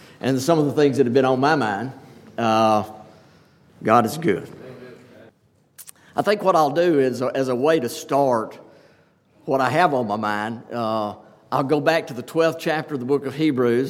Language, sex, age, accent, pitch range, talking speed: English, male, 50-69, American, 135-175 Hz, 195 wpm